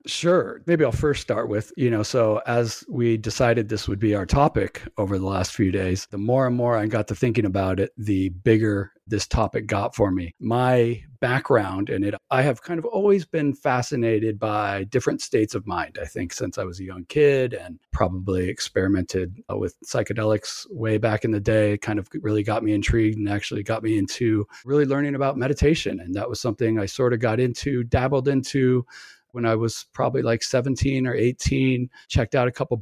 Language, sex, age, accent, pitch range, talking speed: English, male, 40-59, American, 105-130 Hz, 205 wpm